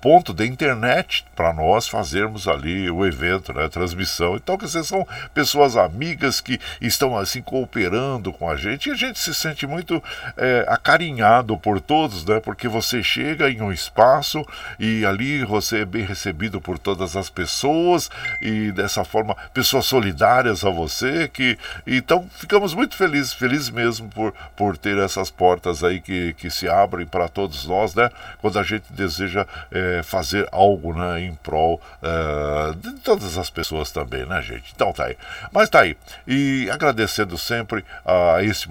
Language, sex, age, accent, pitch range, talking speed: Portuguese, male, 60-79, Brazilian, 90-135 Hz, 170 wpm